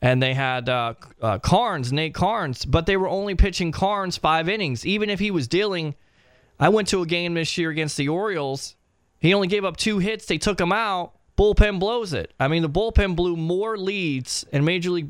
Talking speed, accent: 215 wpm, American